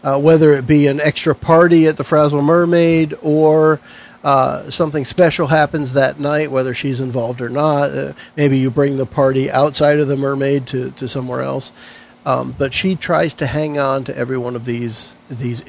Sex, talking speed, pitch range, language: male, 190 wpm, 135-160 Hz, English